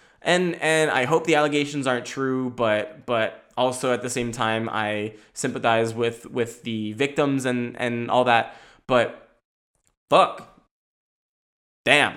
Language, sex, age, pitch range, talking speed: English, male, 20-39, 115-155 Hz, 140 wpm